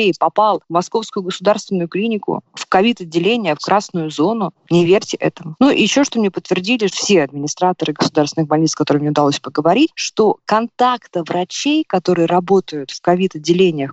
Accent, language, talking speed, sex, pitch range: native, Russian, 155 wpm, female, 160-205 Hz